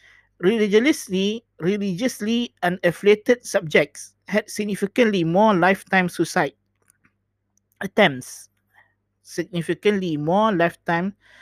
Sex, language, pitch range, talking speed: male, Malay, 160-200 Hz, 70 wpm